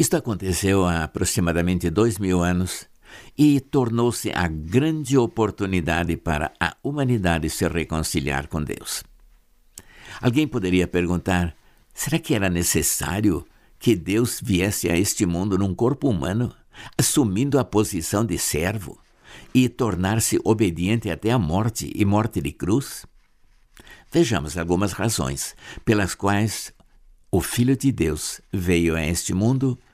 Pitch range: 85-115 Hz